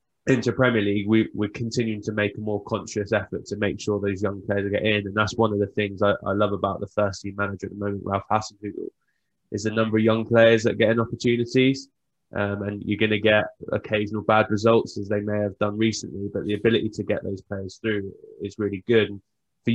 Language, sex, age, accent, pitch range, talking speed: English, male, 20-39, British, 100-115 Hz, 235 wpm